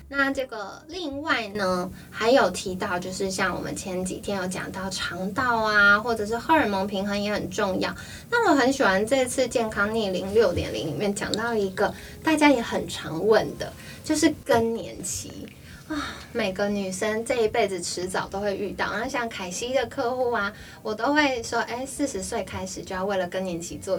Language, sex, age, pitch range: Chinese, female, 20-39, 195-260 Hz